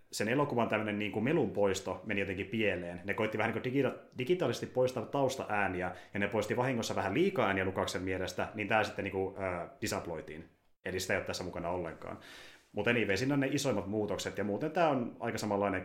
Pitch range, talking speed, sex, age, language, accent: 95-120 Hz, 205 wpm, male, 30-49, Finnish, native